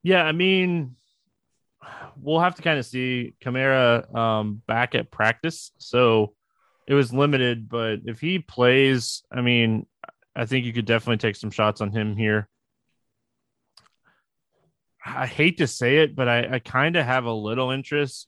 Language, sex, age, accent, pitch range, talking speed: English, male, 20-39, American, 110-135 Hz, 155 wpm